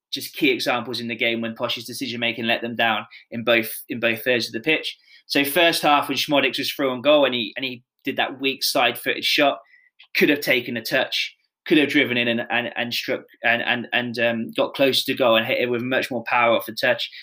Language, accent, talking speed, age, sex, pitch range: English, British, 245 wpm, 20-39, male, 120-160 Hz